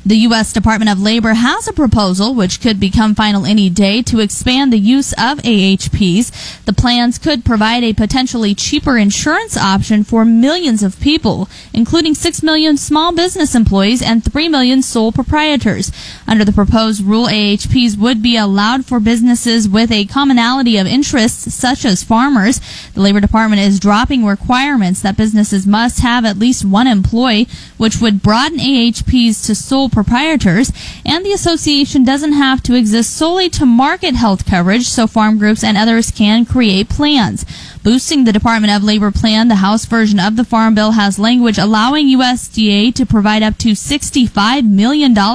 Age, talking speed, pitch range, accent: 10-29, 165 wpm, 210-255 Hz, American